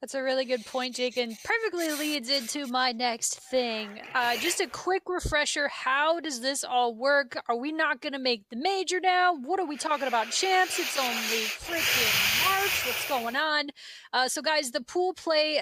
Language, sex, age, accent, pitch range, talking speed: English, female, 20-39, American, 240-285 Hz, 195 wpm